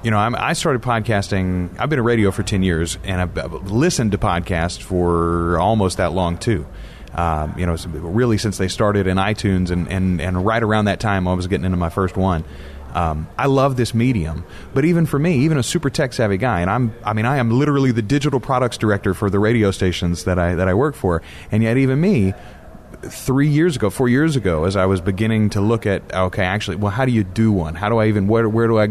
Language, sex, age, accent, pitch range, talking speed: English, male, 30-49, American, 95-130 Hz, 235 wpm